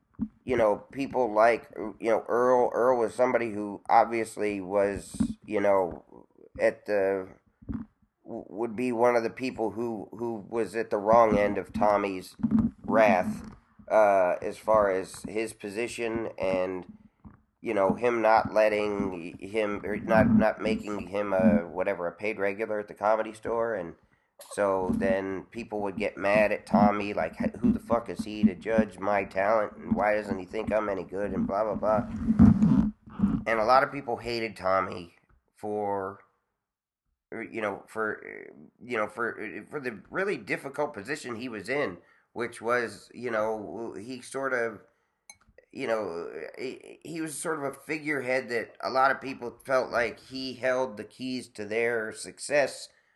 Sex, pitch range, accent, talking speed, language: male, 105-130 Hz, American, 160 wpm, English